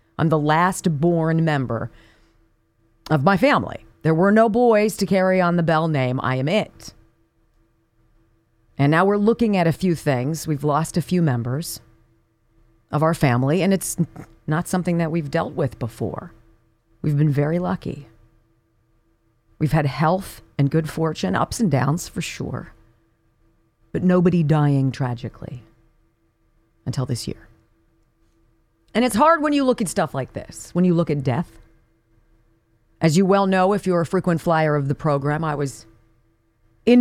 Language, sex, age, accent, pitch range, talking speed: English, female, 40-59, American, 115-175 Hz, 160 wpm